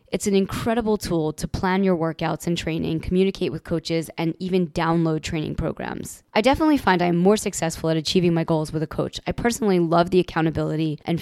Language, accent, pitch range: English, American, 160-185 Hz